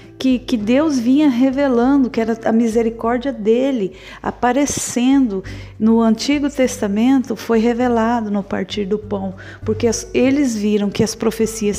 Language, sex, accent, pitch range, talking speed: Portuguese, female, Brazilian, 200-245 Hz, 125 wpm